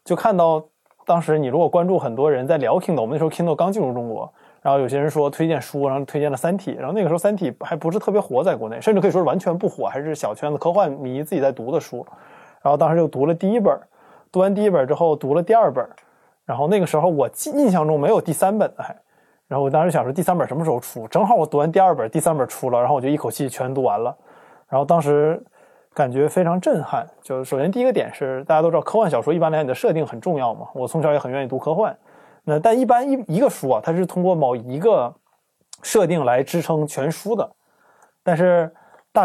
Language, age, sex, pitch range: Chinese, 20-39, male, 145-180 Hz